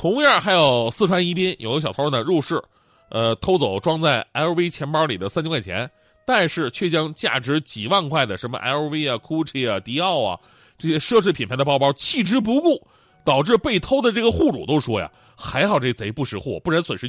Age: 30-49